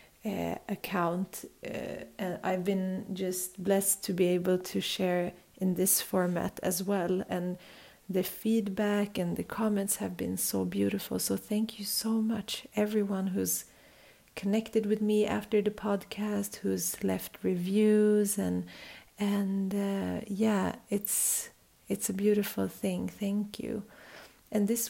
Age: 30-49